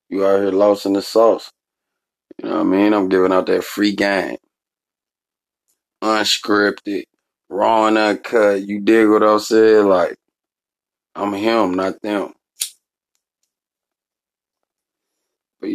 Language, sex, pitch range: English, male, 95-115 Hz